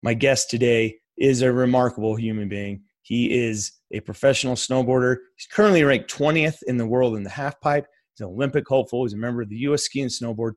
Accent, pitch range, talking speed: American, 105-125 Hz, 205 wpm